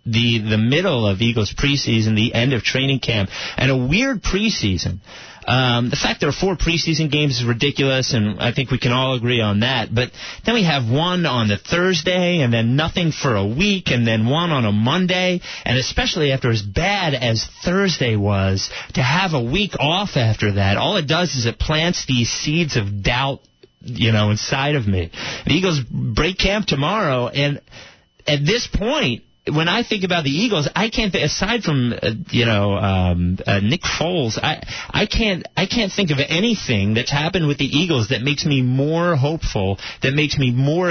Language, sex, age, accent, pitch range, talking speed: English, male, 30-49, American, 115-170 Hz, 195 wpm